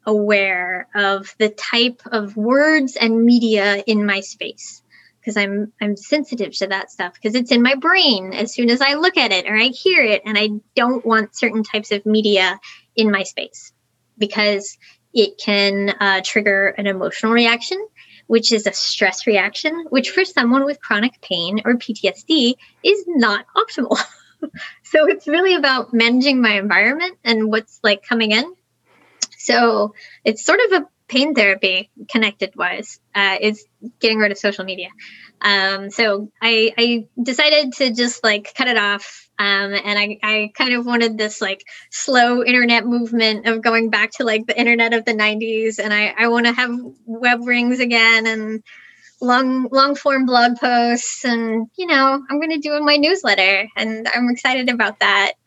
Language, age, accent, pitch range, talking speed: English, 20-39, American, 210-250 Hz, 175 wpm